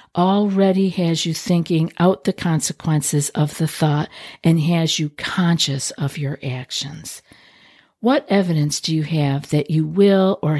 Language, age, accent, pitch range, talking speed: English, 50-69, American, 150-190 Hz, 145 wpm